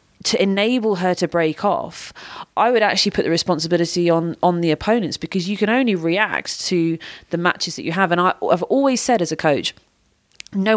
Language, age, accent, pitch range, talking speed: English, 30-49, British, 155-200 Hz, 200 wpm